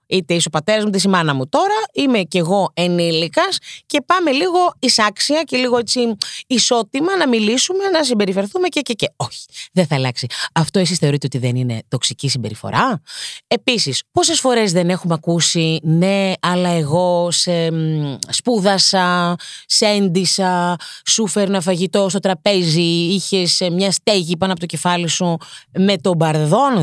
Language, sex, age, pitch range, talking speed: Greek, female, 30-49, 155-210 Hz, 155 wpm